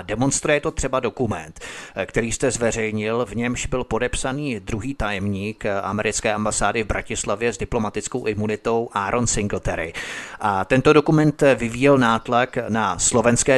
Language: Czech